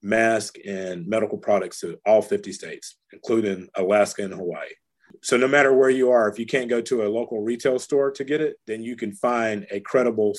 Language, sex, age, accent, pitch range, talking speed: English, male, 30-49, American, 105-125 Hz, 210 wpm